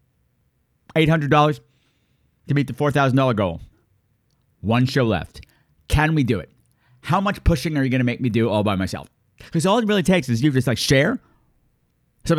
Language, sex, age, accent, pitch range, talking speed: English, male, 50-69, American, 115-145 Hz, 175 wpm